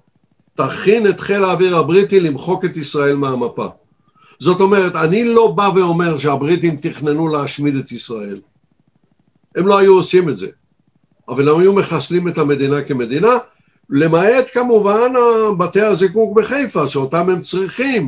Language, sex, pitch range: Hebrew, male, 150-190 Hz